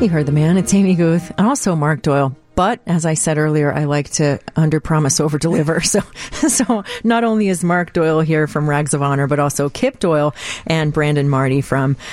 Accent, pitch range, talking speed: American, 145-175 Hz, 205 wpm